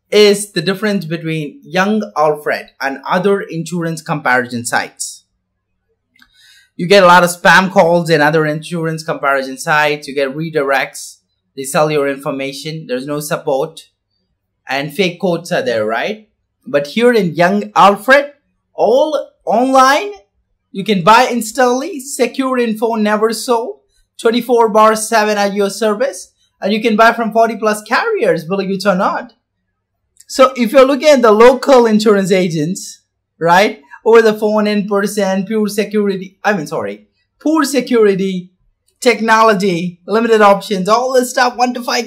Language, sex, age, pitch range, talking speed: English, male, 30-49, 165-240 Hz, 145 wpm